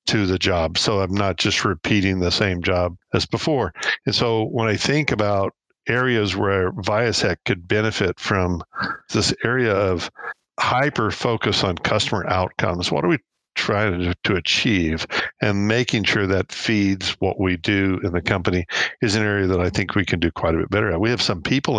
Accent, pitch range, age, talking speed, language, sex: American, 95-110 Hz, 50-69, 185 wpm, English, male